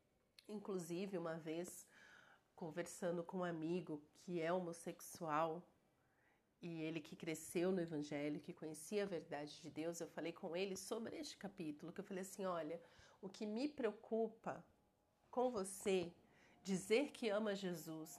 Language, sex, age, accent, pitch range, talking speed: Portuguese, female, 40-59, Brazilian, 170-225 Hz, 145 wpm